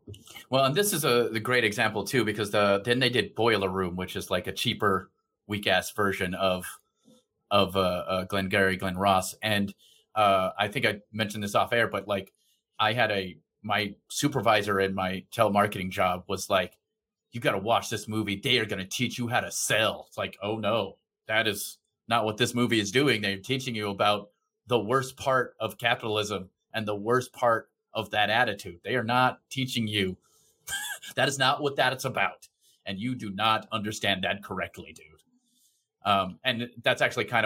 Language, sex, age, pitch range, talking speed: English, male, 30-49, 100-120 Hz, 195 wpm